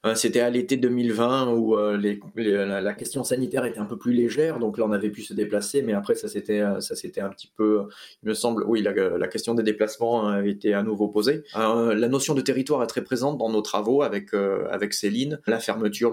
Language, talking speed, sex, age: French, 240 wpm, male, 20-39